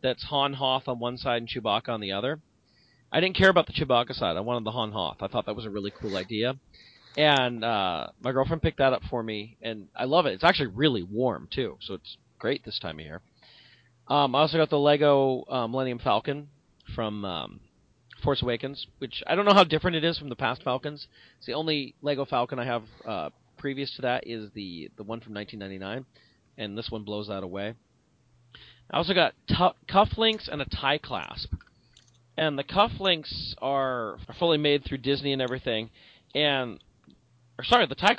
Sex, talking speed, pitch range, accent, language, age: male, 205 wpm, 110-140 Hz, American, English, 40-59